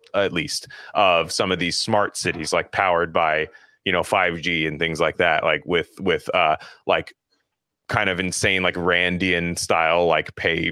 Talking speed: 175 wpm